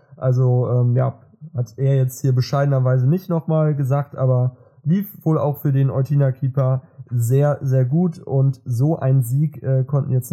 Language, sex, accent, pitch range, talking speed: German, male, German, 130-145 Hz, 170 wpm